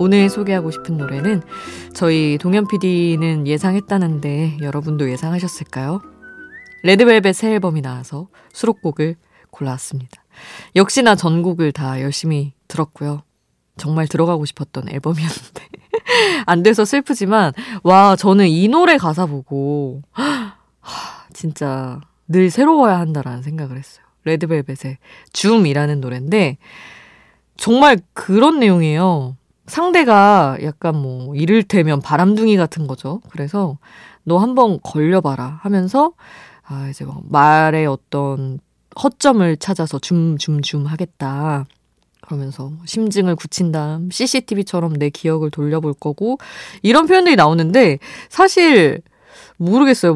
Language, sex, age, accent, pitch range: Korean, female, 20-39, native, 145-200 Hz